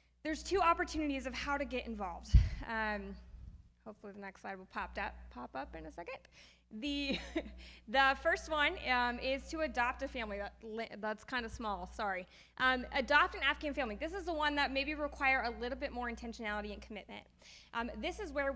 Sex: female